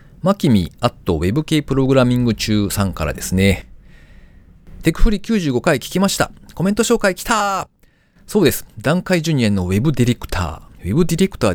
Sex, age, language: male, 40-59, Japanese